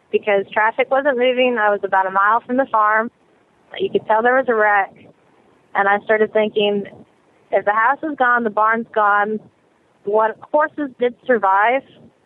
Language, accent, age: English, American, 20-39